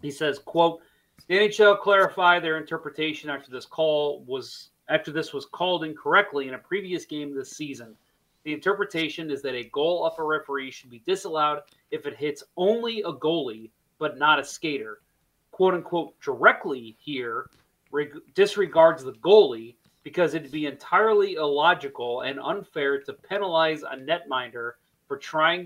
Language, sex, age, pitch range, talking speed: English, male, 30-49, 135-175 Hz, 155 wpm